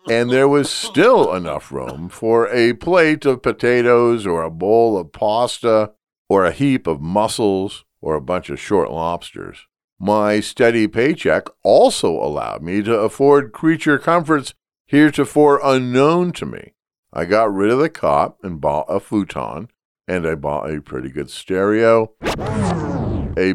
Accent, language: American, English